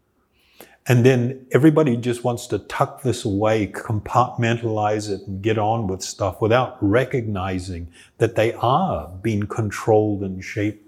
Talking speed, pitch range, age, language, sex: 140 wpm, 100-125 Hz, 50-69, English, male